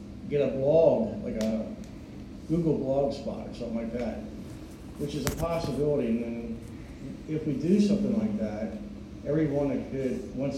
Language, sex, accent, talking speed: English, male, American, 145 wpm